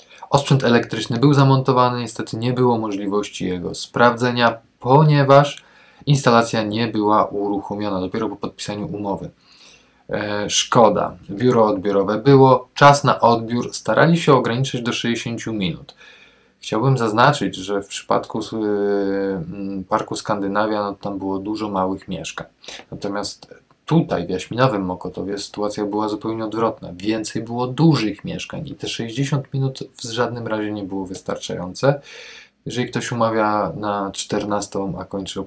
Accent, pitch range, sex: native, 100-130 Hz, male